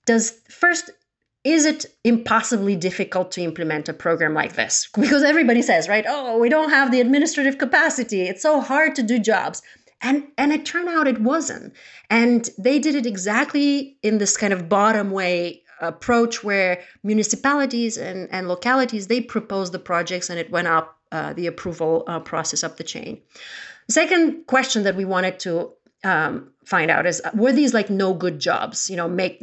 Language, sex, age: English, female, 30-49